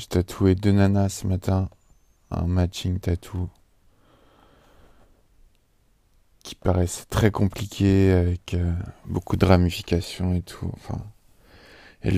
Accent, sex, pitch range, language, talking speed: French, male, 90-100 Hz, French, 105 wpm